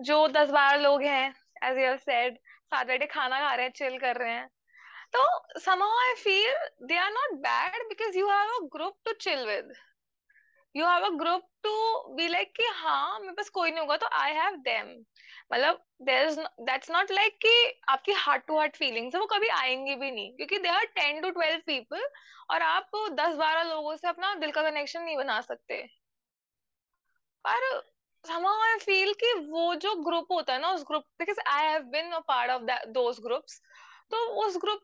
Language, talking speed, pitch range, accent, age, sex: Hindi, 100 wpm, 295-405 Hz, native, 20-39, female